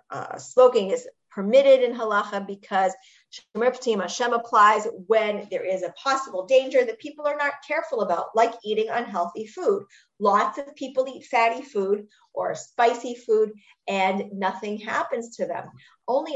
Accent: American